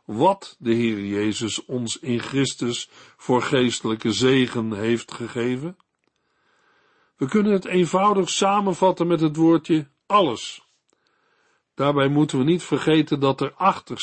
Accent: Dutch